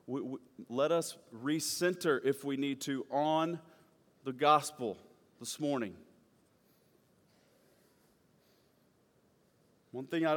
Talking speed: 100 wpm